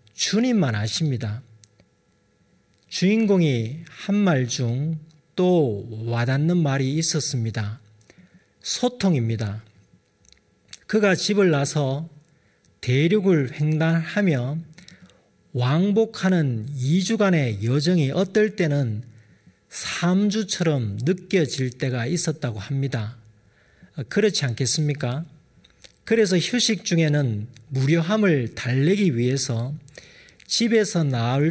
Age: 40-59